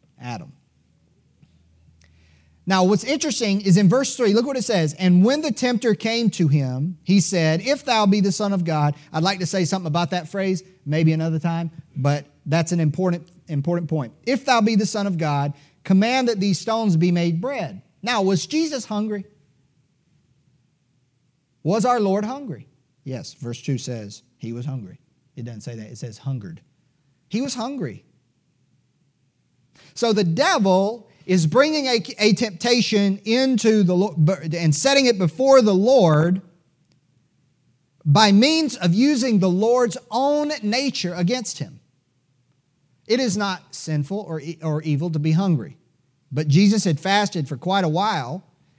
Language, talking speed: English, 160 wpm